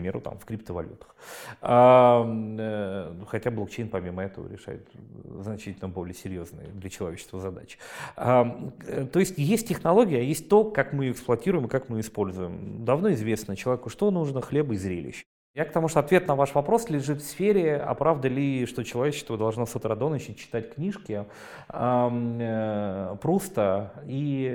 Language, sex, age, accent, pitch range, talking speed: Russian, male, 30-49, native, 110-145 Hz, 150 wpm